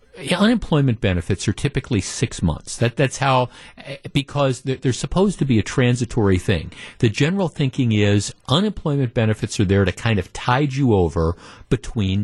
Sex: male